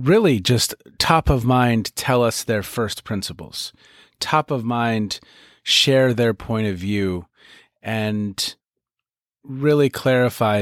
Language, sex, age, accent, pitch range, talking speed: English, male, 30-49, American, 100-130 Hz, 120 wpm